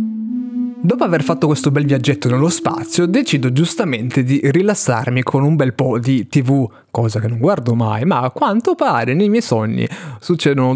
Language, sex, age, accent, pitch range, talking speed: Italian, male, 20-39, native, 120-165 Hz, 175 wpm